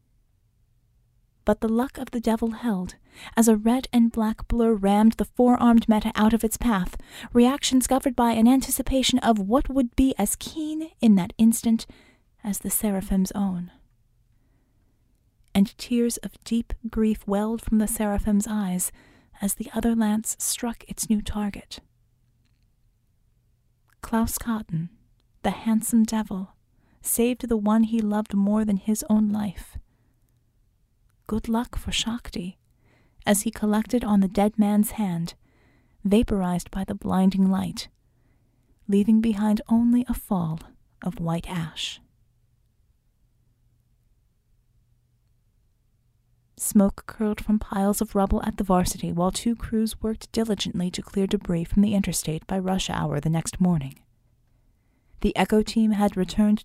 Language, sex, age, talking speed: English, female, 30-49, 135 wpm